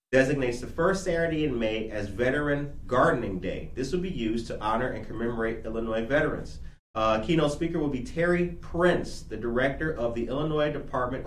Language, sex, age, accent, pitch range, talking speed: English, male, 30-49, American, 105-130 Hz, 175 wpm